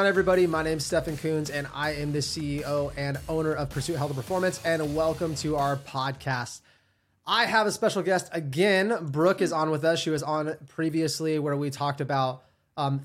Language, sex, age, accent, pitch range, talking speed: English, male, 20-39, American, 140-170 Hz, 200 wpm